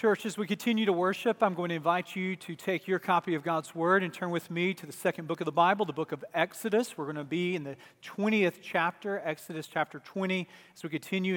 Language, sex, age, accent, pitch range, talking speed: English, male, 40-59, American, 155-185 Hz, 250 wpm